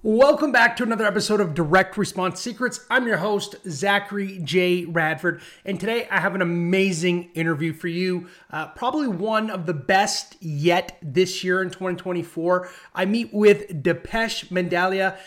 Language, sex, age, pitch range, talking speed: English, male, 30-49, 175-220 Hz, 155 wpm